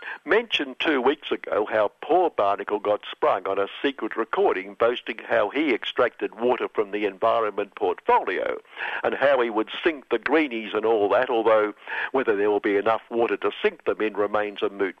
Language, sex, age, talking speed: English, male, 60-79, 185 wpm